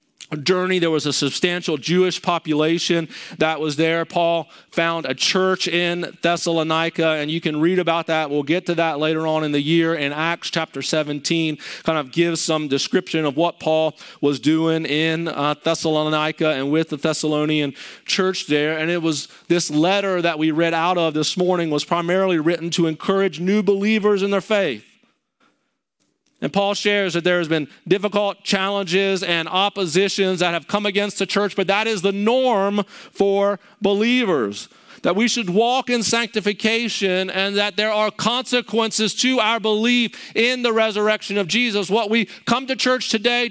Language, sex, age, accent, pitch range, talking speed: English, male, 40-59, American, 155-205 Hz, 170 wpm